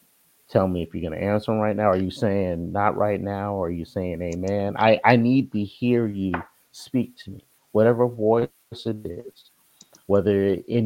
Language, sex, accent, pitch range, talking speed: English, male, American, 95-110 Hz, 200 wpm